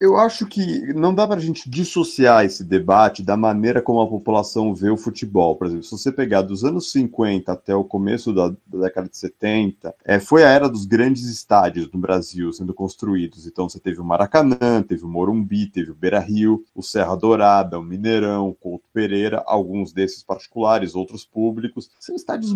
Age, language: 30-49, Portuguese